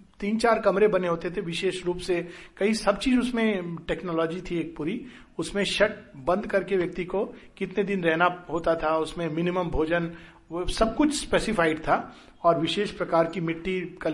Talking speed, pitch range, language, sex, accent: 180 wpm, 175-245 Hz, Hindi, male, native